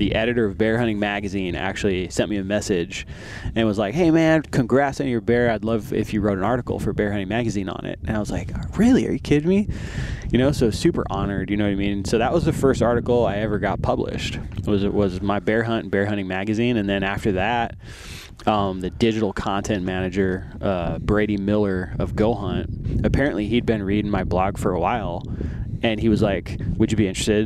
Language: English